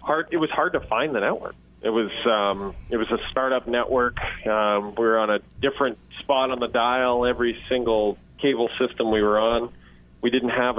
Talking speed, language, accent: 200 wpm, English, American